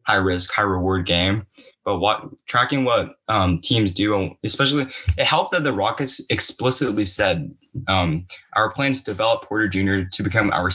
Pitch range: 95-130 Hz